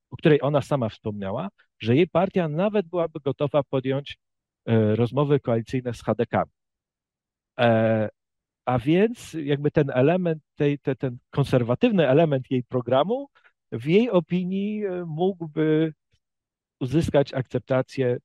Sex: male